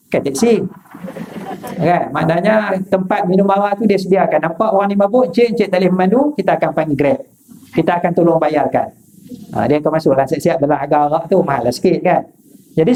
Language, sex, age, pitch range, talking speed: Malay, male, 50-69, 175-220 Hz, 195 wpm